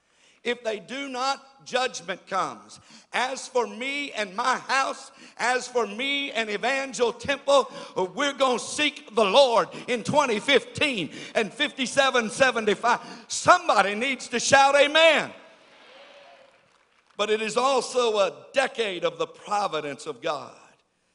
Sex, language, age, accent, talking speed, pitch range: male, English, 60-79, American, 125 wpm, 165-250 Hz